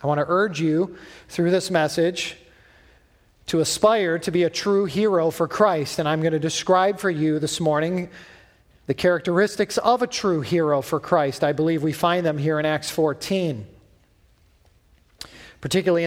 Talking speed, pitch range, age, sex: 165 wpm, 150-185 Hz, 40-59, male